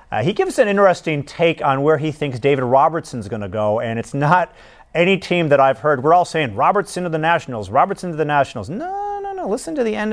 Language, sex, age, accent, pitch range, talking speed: English, male, 40-59, American, 130-185 Hz, 245 wpm